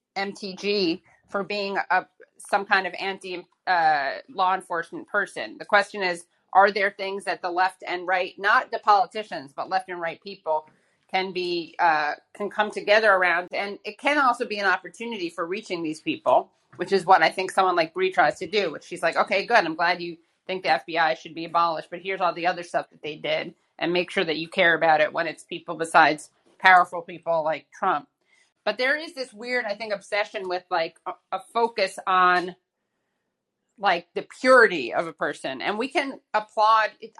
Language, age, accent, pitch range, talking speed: English, 30-49, American, 170-205 Hz, 200 wpm